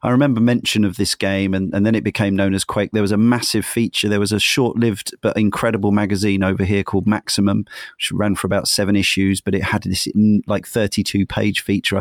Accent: British